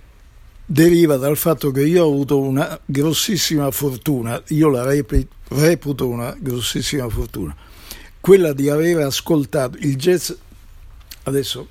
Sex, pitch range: male, 125-160 Hz